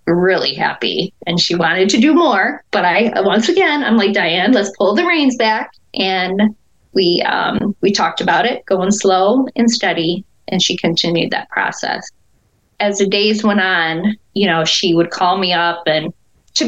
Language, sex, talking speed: English, female, 180 wpm